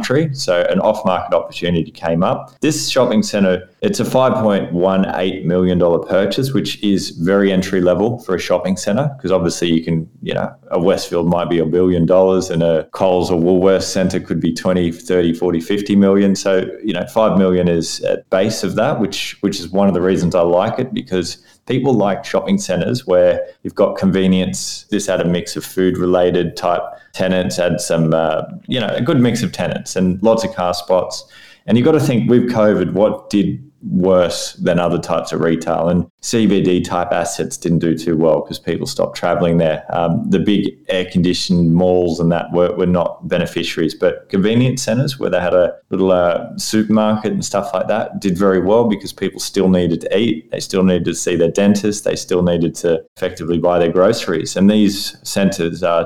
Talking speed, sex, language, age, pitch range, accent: 195 wpm, male, English, 20-39, 85-100 Hz, Australian